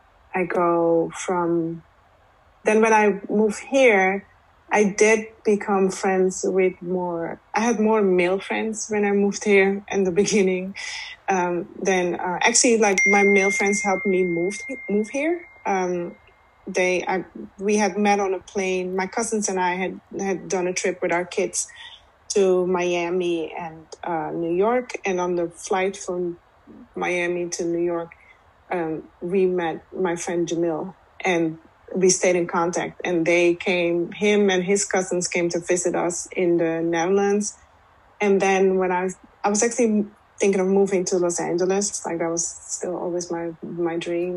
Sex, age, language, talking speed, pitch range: female, 30-49, English, 165 wpm, 175-205 Hz